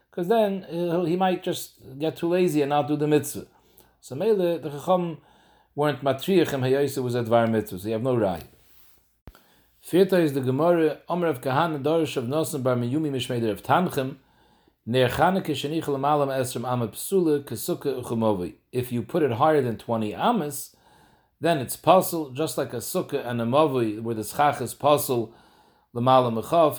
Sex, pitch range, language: male, 120-155 Hz, English